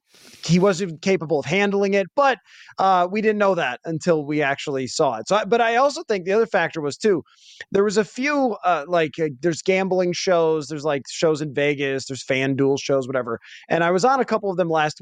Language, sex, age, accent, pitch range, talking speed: English, male, 20-39, American, 165-210 Hz, 230 wpm